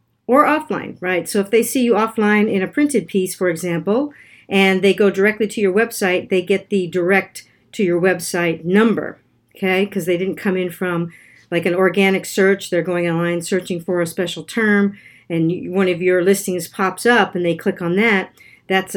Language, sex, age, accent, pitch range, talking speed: English, female, 50-69, American, 175-215 Hz, 195 wpm